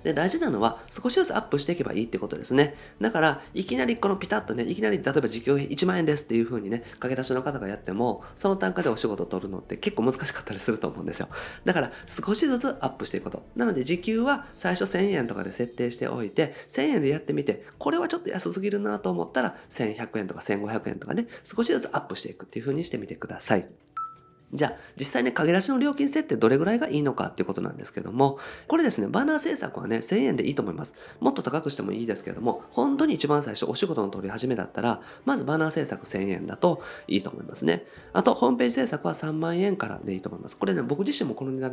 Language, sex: Japanese, male